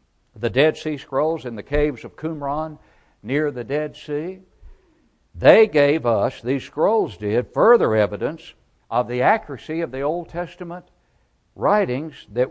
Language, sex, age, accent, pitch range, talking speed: English, male, 60-79, American, 125-170 Hz, 145 wpm